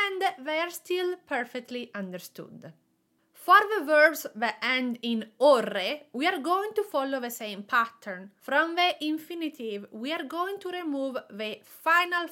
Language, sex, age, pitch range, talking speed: English, female, 30-49, 220-340 Hz, 150 wpm